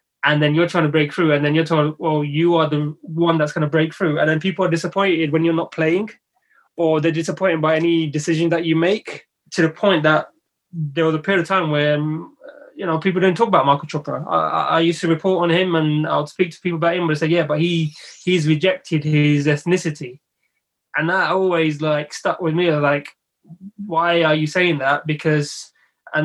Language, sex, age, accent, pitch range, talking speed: English, male, 20-39, British, 150-170 Hz, 220 wpm